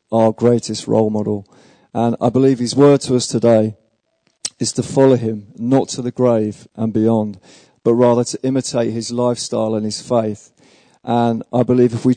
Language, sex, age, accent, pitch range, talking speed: English, male, 50-69, British, 115-130 Hz, 180 wpm